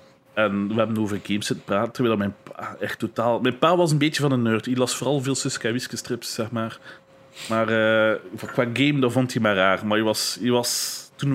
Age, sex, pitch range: 30-49, male, 105-125 Hz